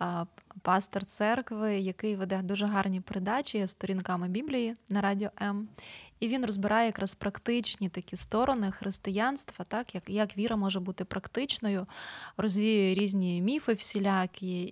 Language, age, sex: Ukrainian, 20-39, female